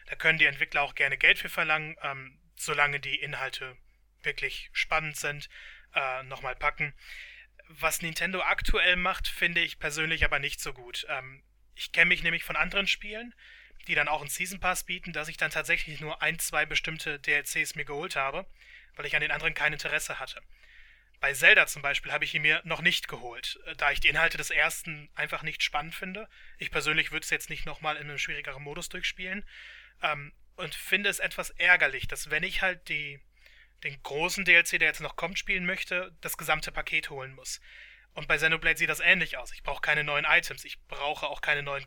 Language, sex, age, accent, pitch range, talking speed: German, male, 20-39, German, 145-165 Hz, 200 wpm